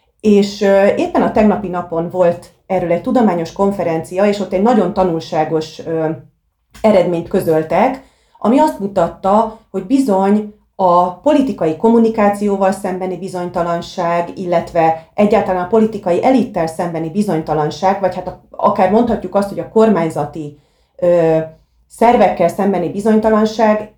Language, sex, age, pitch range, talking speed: Hungarian, female, 30-49, 170-210 Hz, 115 wpm